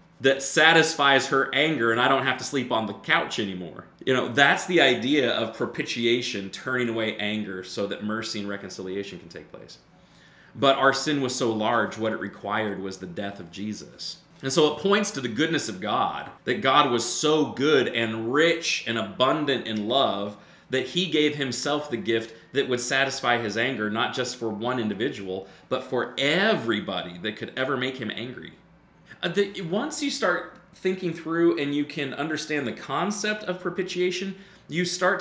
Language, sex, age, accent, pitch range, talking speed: English, male, 30-49, American, 110-150 Hz, 180 wpm